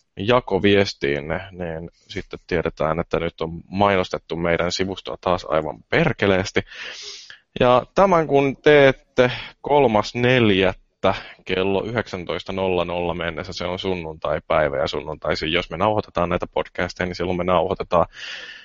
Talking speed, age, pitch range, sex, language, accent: 115 wpm, 20-39, 85-100 Hz, male, Finnish, native